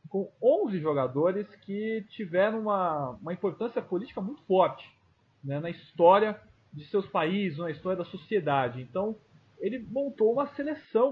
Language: English